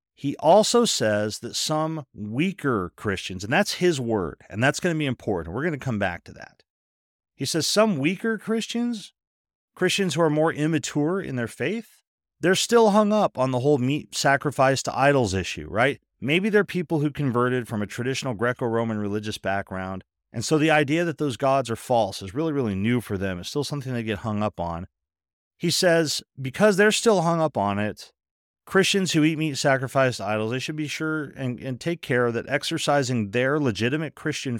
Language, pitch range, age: English, 105-155 Hz, 40-59